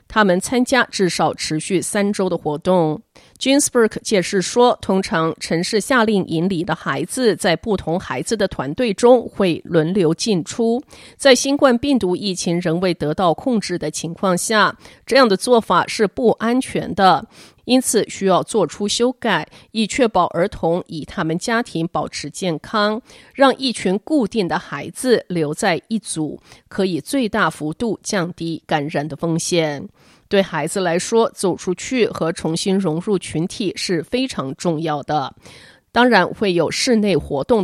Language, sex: Chinese, female